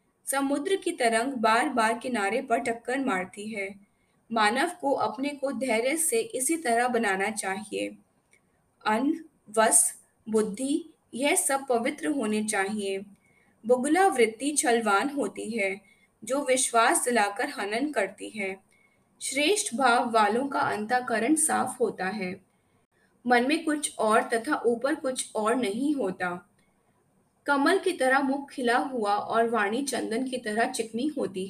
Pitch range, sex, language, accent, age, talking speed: 205-270 Hz, female, Hindi, native, 20-39, 130 wpm